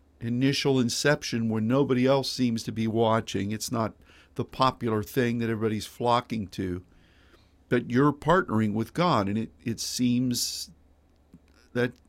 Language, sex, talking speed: English, male, 140 wpm